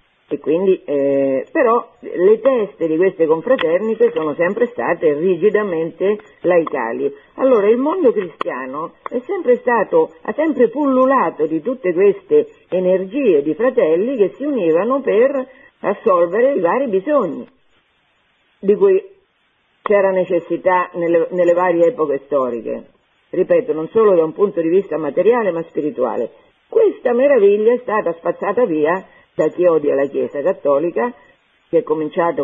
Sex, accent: female, native